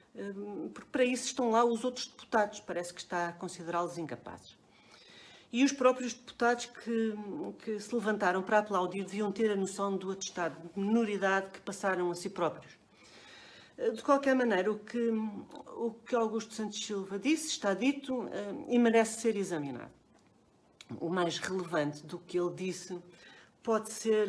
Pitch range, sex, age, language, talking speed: 180-240 Hz, female, 50-69, Portuguese, 155 wpm